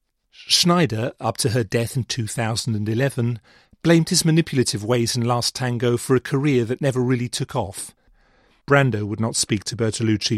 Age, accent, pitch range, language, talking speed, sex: 40-59, British, 115-135 Hz, English, 160 wpm, male